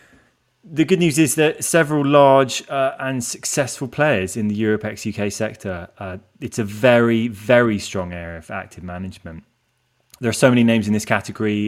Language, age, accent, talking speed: English, 20-39, British, 175 wpm